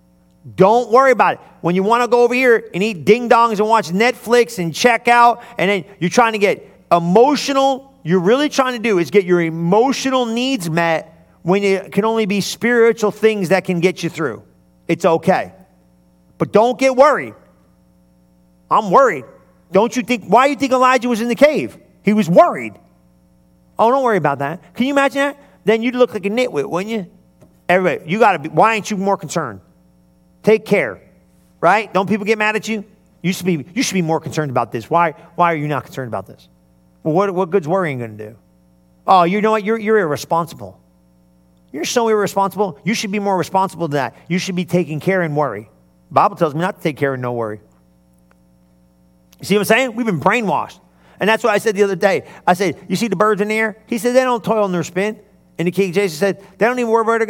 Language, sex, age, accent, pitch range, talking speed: English, male, 40-59, American, 140-225 Hz, 225 wpm